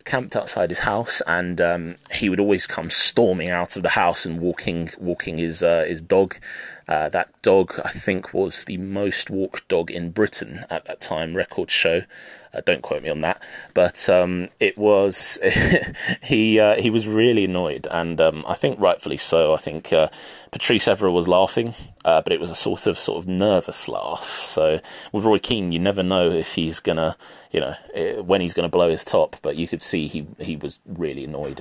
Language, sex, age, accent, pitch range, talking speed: English, male, 20-39, British, 85-105 Hz, 205 wpm